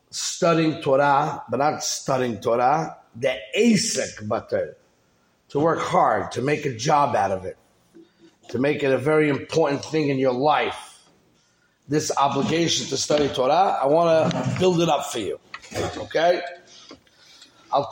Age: 30-49